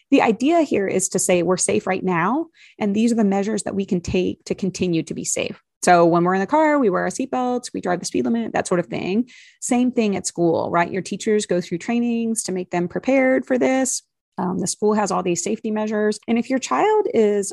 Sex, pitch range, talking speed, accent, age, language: female, 185-235 Hz, 245 wpm, American, 30-49, English